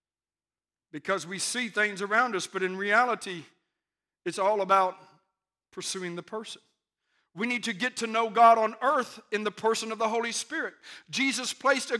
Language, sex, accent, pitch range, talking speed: English, male, American, 215-280 Hz, 170 wpm